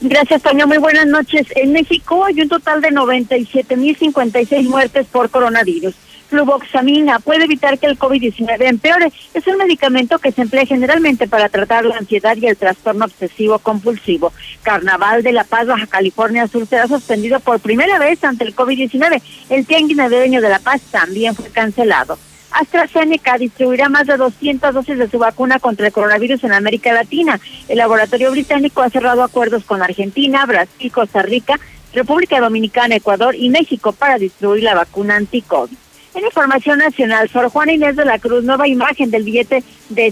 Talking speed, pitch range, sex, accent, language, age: 165 wpm, 225-285 Hz, female, Mexican, Spanish, 40-59